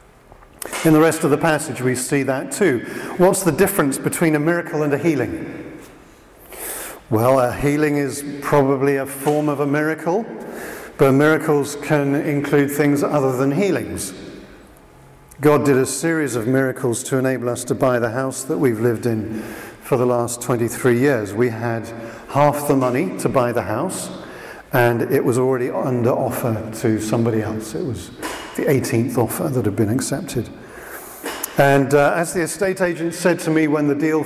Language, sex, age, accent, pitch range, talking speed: English, male, 50-69, British, 120-150 Hz, 170 wpm